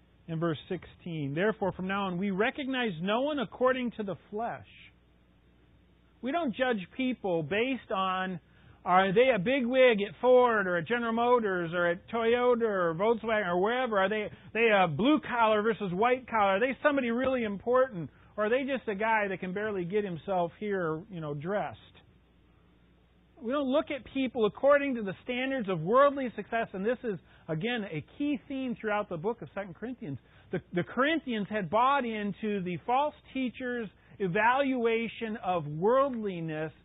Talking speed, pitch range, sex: 170 wpm, 185-250 Hz, male